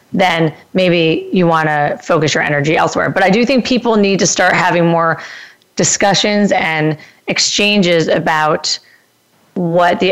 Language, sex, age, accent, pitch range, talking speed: English, female, 30-49, American, 170-210 Hz, 150 wpm